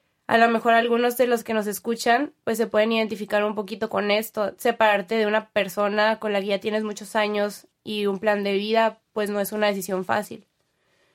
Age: 20-39